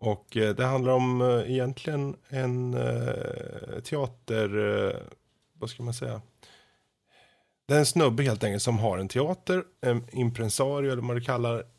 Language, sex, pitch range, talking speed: Swedish, male, 105-125 Hz, 130 wpm